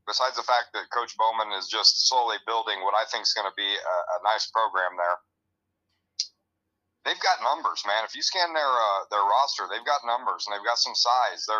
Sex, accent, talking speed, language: male, American, 215 wpm, English